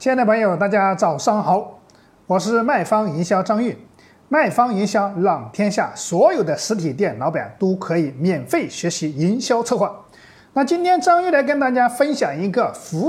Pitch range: 185-290 Hz